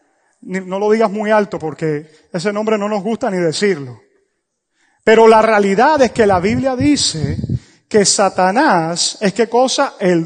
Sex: male